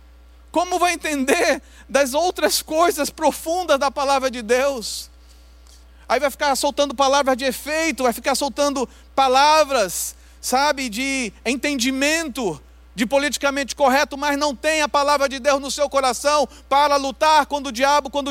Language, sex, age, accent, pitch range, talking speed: Portuguese, male, 40-59, Brazilian, 190-275 Hz, 145 wpm